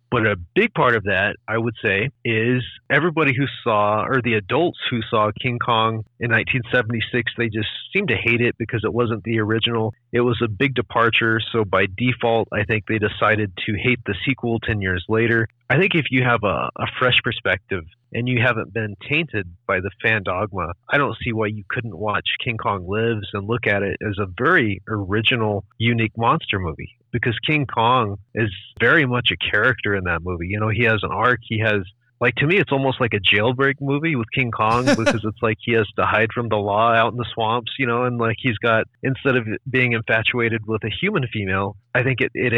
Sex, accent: male, American